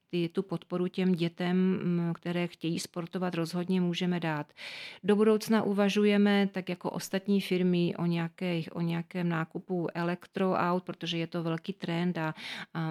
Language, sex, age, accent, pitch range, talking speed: Czech, female, 40-59, native, 175-195 Hz, 145 wpm